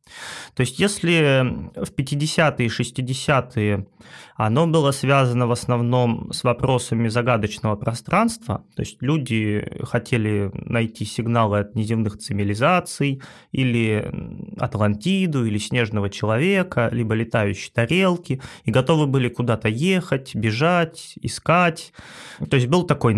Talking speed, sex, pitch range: 115 wpm, male, 115-165 Hz